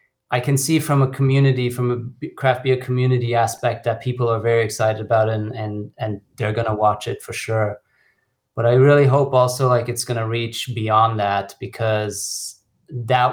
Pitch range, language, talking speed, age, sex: 105-125 Hz, English, 190 wpm, 30-49, male